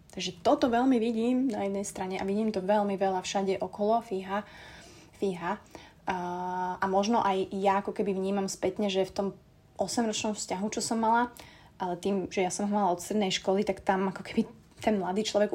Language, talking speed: Slovak, 185 wpm